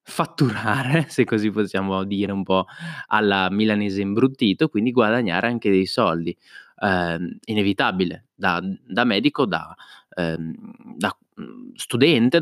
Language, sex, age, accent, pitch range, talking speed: Italian, male, 20-39, native, 95-125 Hz, 115 wpm